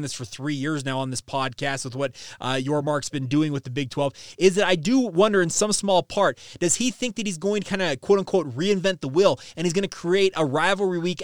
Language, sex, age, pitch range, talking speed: English, male, 20-39, 155-195 Hz, 260 wpm